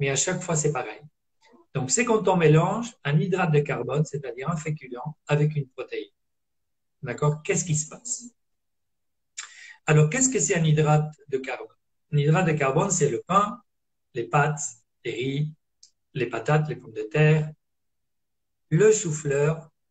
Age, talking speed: 40-59, 160 wpm